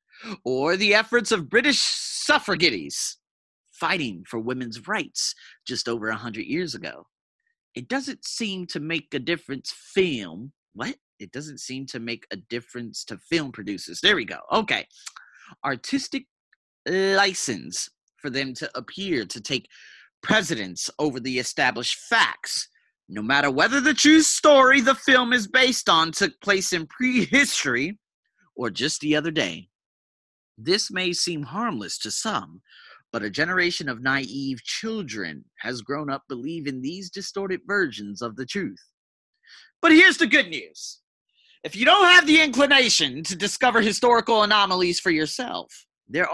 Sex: male